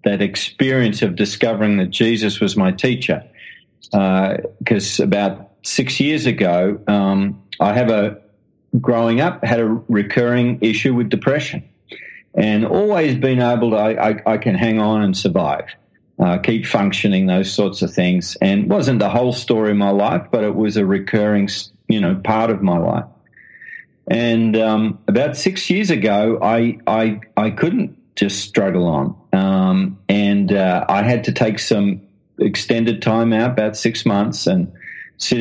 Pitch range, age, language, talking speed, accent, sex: 105-120 Hz, 40-59, English, 165 wpm, Australian, male